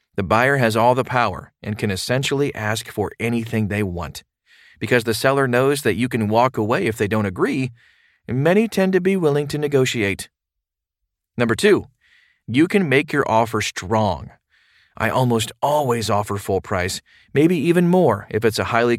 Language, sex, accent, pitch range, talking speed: English, male, American, 105-135 Hz, 175 wpm